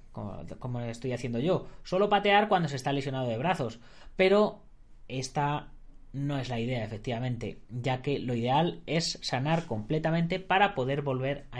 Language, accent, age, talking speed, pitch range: Spanish, Spanish, 30-49, 160 wpm, 120-170 Hz